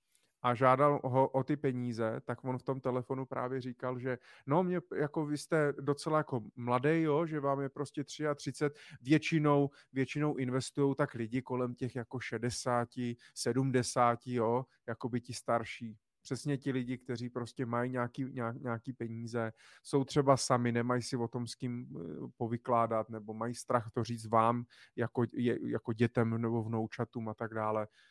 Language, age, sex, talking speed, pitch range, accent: Czech, 30-49, male, 160 wpm, 115-135 Hz, native